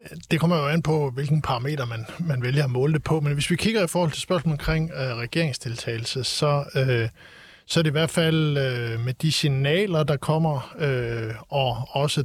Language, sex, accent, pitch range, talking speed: Danish, male, native, 130-155 Hz, 205 wpm